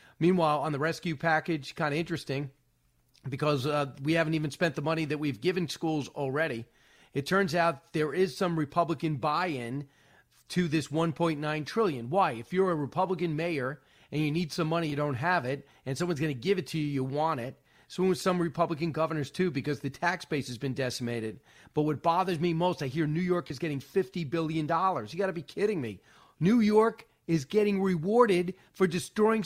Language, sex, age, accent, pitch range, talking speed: English, male, 40-59, American, 140-175 Hz, 210 wpm